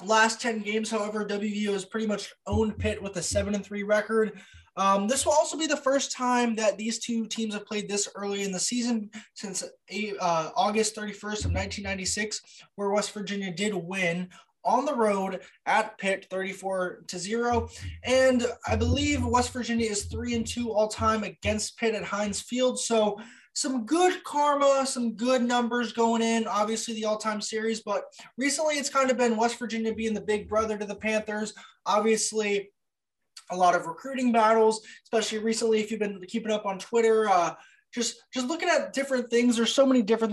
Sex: male